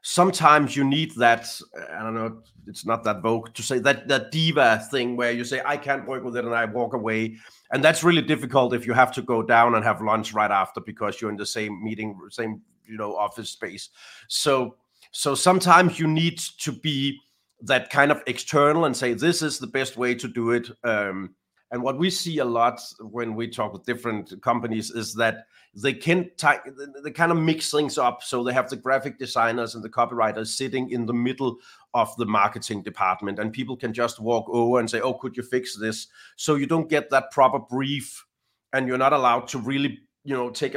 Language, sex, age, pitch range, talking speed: English, male, 30-49, 115-140 Hz, 215 wpm